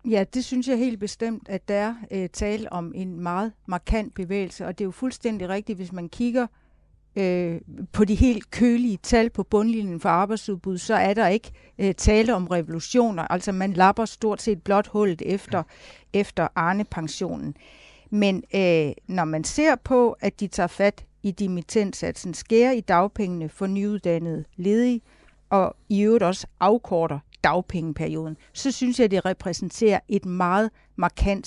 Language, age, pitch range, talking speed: Danish, 60-79, 180-220 Hz, 160 wpm